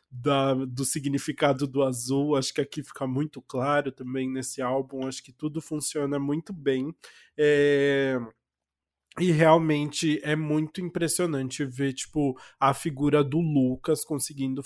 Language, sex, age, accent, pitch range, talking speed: Portuguese, male, 20-39, Brazilian, 135-155 Hz, 125 wpm